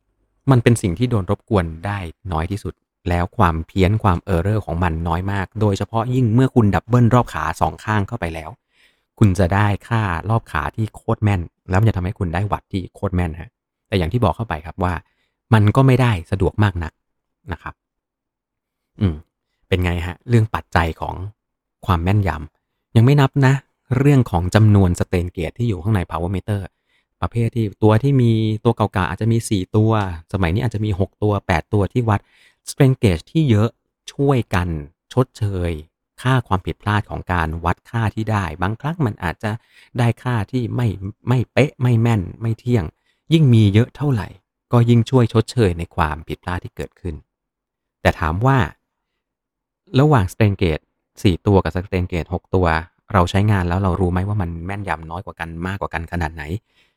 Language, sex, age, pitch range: Thai, male, 30-49, 90-115 Hz